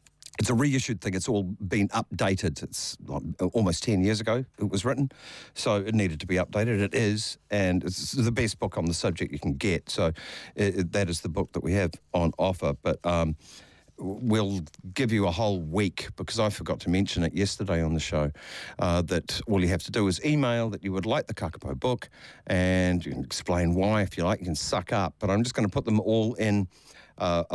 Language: English